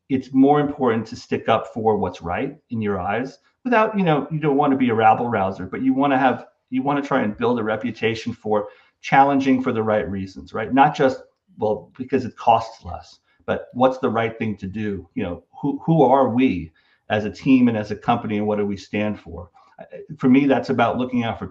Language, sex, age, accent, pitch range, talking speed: English, male, 40-59, American, 105-130 Hz, 230 wpm